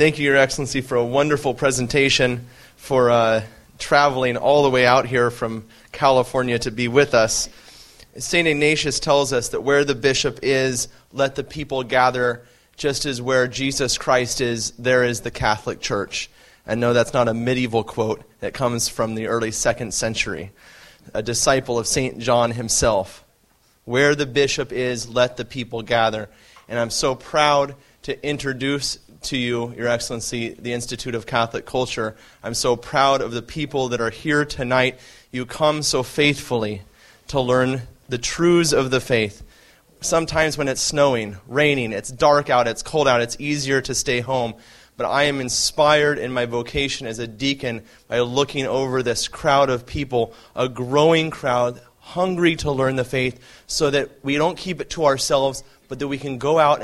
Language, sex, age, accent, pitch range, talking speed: English, male, 30-49, American, 120-140 Hz, 175 wpm